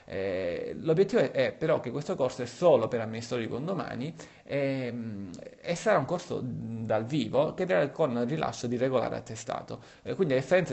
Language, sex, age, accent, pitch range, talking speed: Italian, male, 30-49, native, 115-145 Hz, 185 wpm